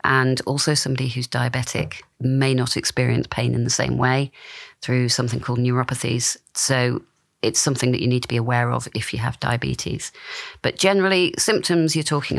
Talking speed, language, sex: 175 wpm, English, female